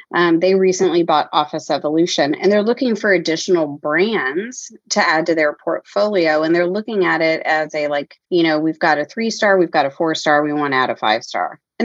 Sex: female